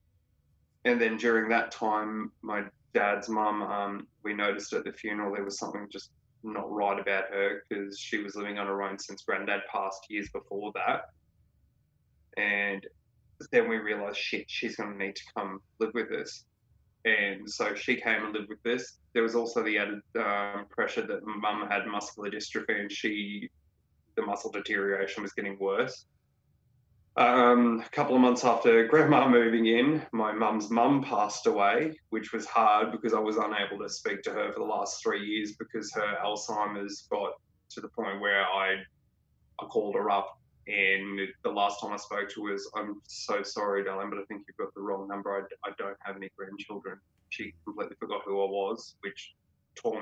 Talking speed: 185 wpm